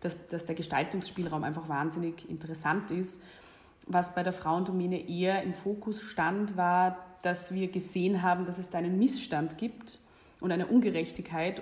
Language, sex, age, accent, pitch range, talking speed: German, female, 20-39, German, 165-185 Hz, 150 wpm